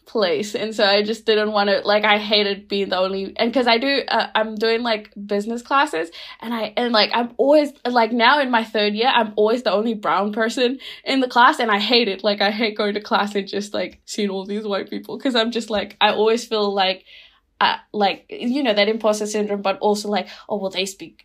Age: 10-29